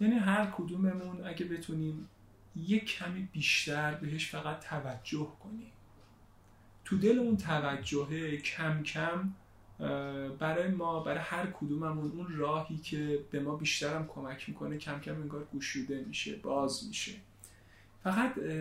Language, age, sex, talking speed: Persian, 30-49, male, 125 wpm